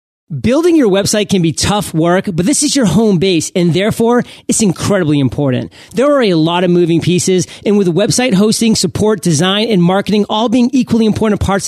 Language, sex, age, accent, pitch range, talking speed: English, male, 40-59, American, 170-215 Hz, 195 wpm